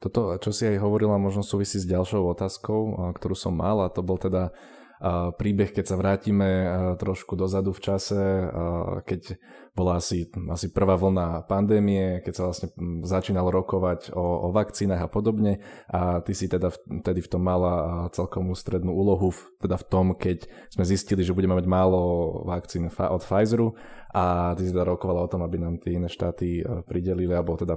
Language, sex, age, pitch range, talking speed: Slovak, male, 20-39, 90-95 Hz, 175 wpm